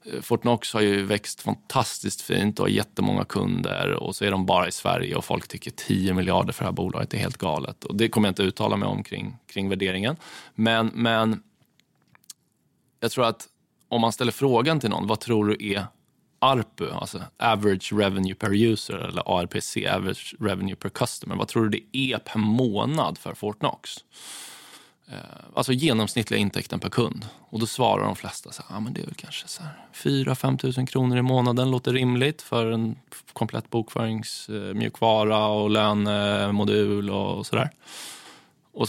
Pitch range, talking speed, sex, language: 100-120 Hz, 165 wpm, male, Swedish